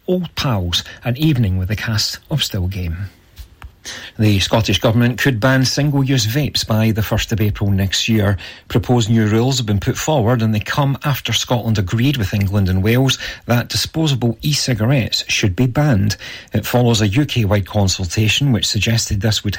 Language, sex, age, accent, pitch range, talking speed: English, male, 40-59, British, 105-130 Hz, 170 wpm